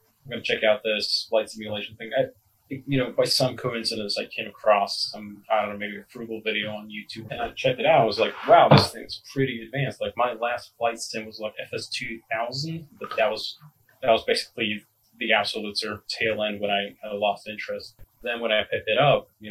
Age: 30-49